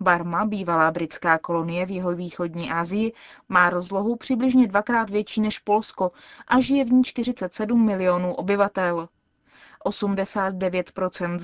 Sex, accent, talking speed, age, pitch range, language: female, native, 115 wpm, 20-39, 185-225 Hz, Czech